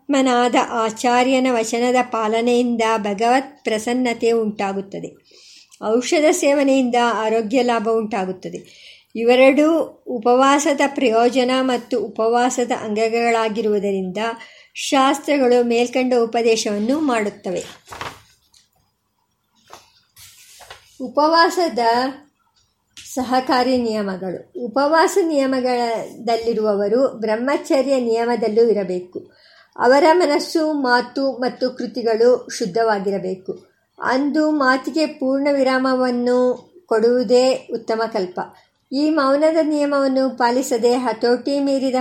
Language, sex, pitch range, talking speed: Kannada, male, 230-275 Hz, 70 wpm